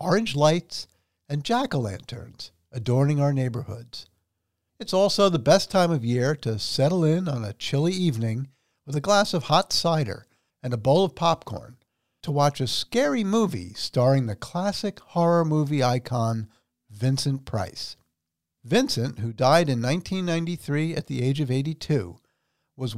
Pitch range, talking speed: 115-170 Hz, 145 wpm